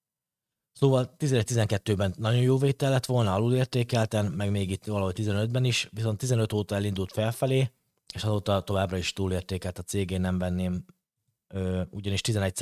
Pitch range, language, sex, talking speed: 90-110 Hz, Hungarian, male, 140 wpm